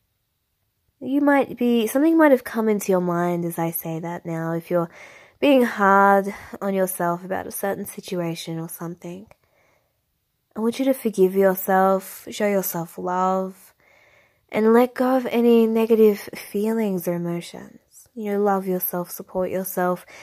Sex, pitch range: female, 170-215 Hz